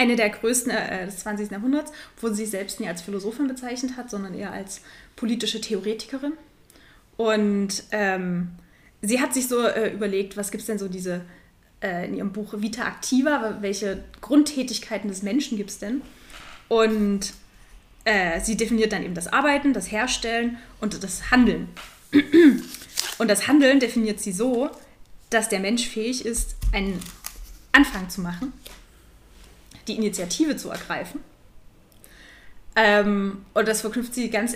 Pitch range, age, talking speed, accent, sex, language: 200-245 Hz, 20-39, 150 wpm, German, female, German